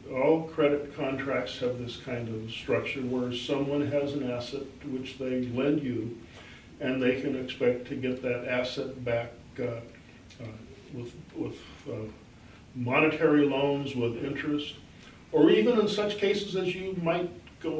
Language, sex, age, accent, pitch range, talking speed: English, male, 50-69, American, 125-145 Hz, 150 wpm